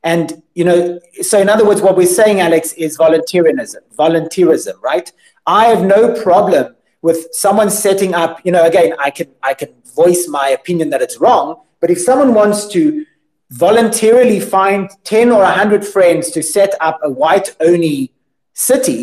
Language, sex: English, male